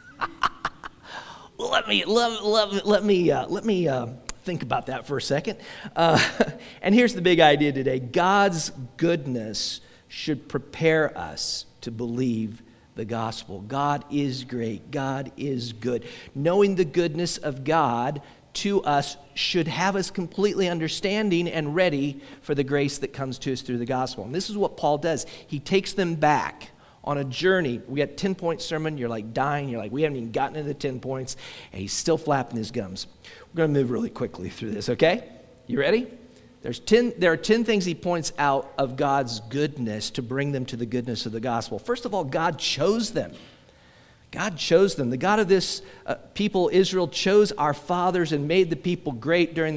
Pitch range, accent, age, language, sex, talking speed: 130-185 Hz, American, 50-69, English, male, 190 wpm